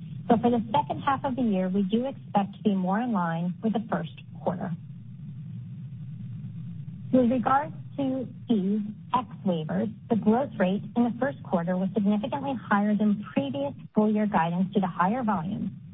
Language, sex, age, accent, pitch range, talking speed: English, female, 40-59, American, 170-225 Hz, 170 wpm